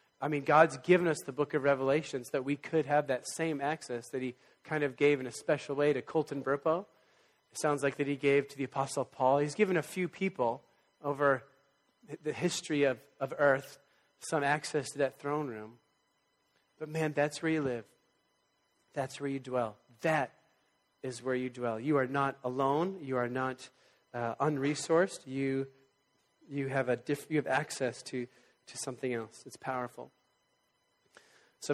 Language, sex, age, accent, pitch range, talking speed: English, male, 30-49, American, 130-155 Hz, 180 wpm